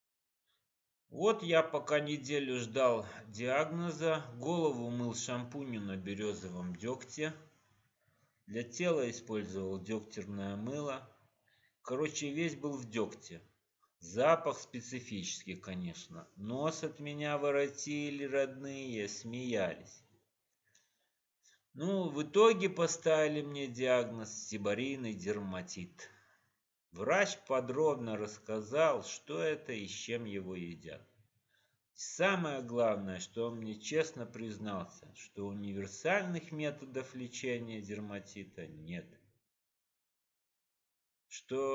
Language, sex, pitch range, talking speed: Russian, male, 105-150 Hz, 90 wpm